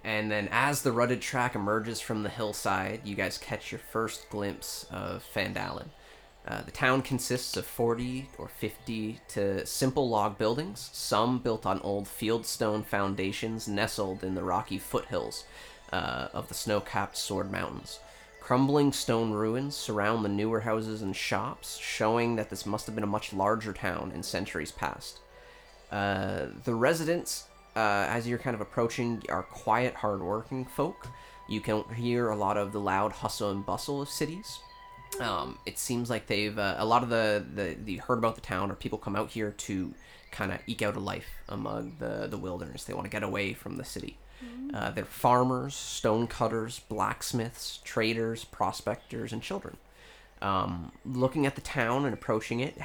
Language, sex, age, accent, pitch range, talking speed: English, male, 30-49, American, 100-125 Hz, 175 wpm